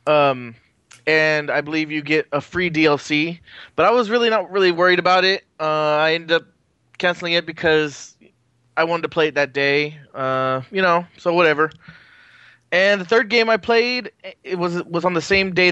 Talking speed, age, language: 190 wpm, 20-39, English